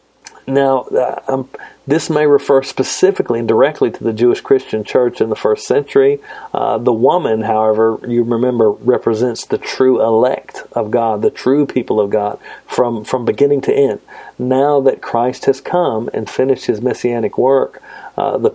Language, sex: English, male